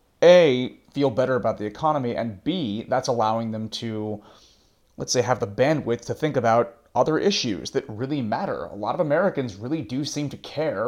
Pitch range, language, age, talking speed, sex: 105-135 Hz, English, 30-49, 190 wpm, male